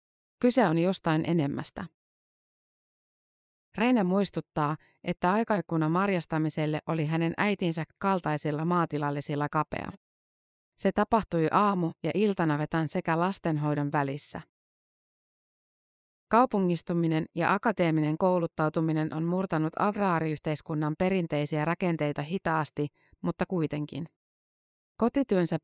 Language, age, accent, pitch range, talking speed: Finnish, 30-49, native, 155-185 Hz, 85 wpm